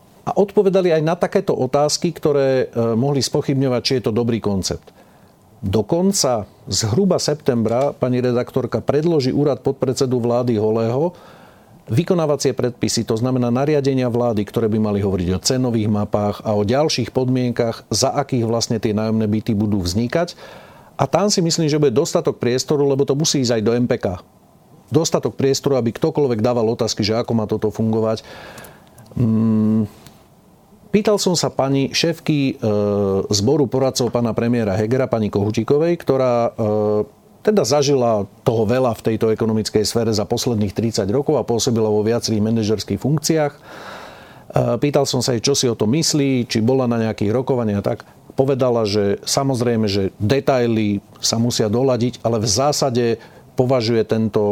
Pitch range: 110-135 Hz